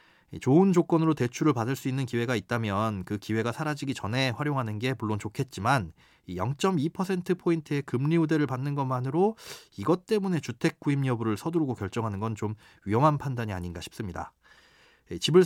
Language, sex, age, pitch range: Korean, male, 30-49, 110-155 Hz